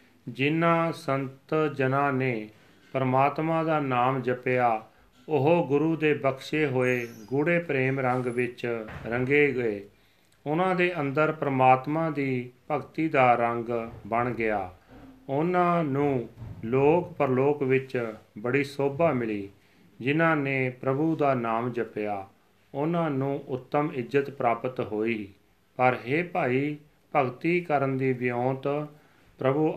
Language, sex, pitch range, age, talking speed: Punjabi, male, 120-145 Hz, 40-59, 95 wpm